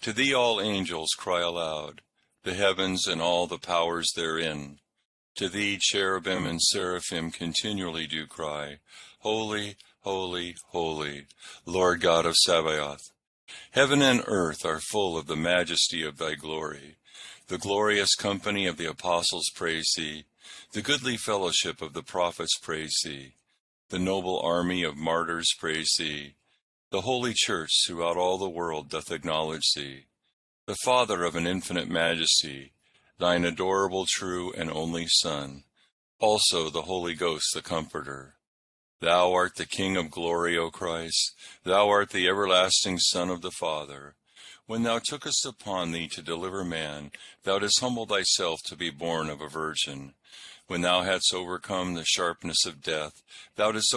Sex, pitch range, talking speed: male, 80-95 Hz, 150 wpm